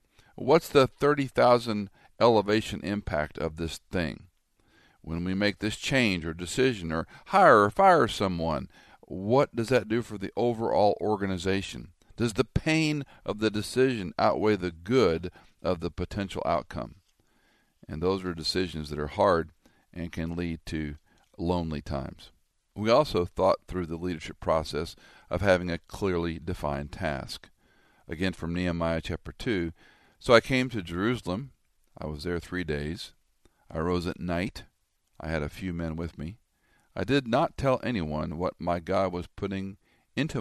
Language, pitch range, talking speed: English, 80-105 Hz, 155 wpm